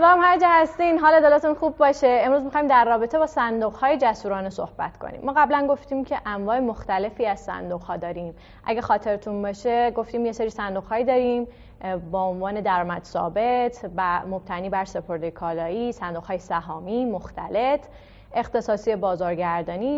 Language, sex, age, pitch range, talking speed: Persian, female, 30-49, 200-280 Hz, 140 wpm